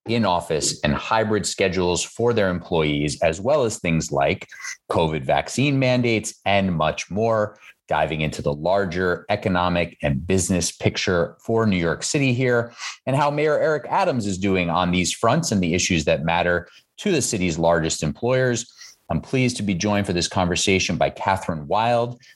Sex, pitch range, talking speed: male, 85-110 Hz, 170 wpm